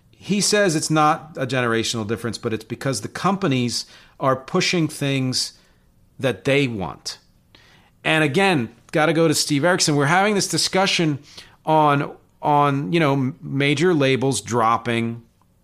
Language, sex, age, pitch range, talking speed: English, male, 40-59, 105-140 Hz, 140 wpm